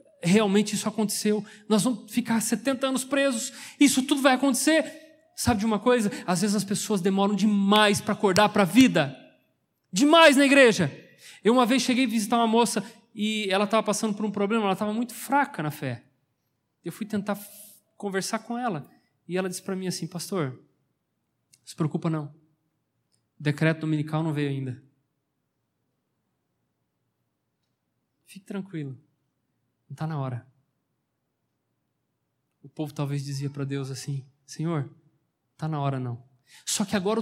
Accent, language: Brazilian, Portuguese